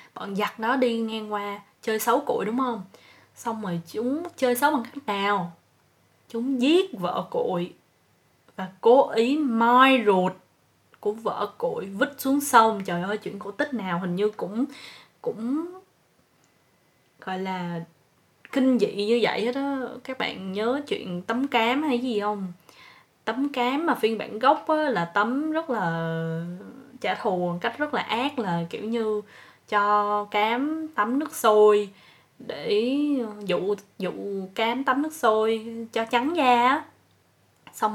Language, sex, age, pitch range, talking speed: Vietnamese, female, 10-29, 200-265 Hz, 155 wpm